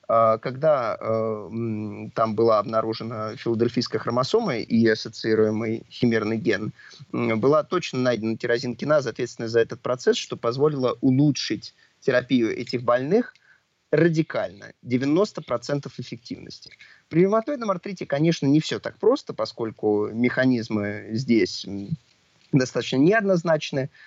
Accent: native